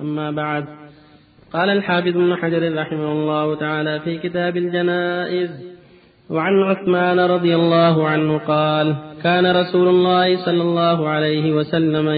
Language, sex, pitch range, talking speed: Arabic, male, 155-180 Hz, 125 wpm